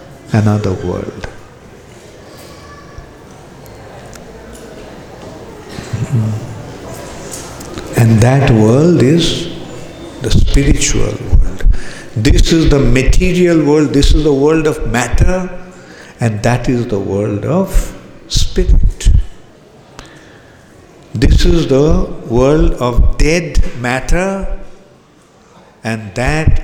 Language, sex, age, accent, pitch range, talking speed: English, male, 60-79, Indian, 115-165 Hz, 85 wpm